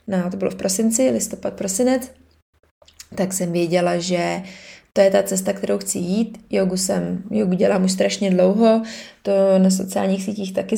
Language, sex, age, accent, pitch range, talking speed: Czech, female, 20-39, native, 180-200 Hz, 165 wpm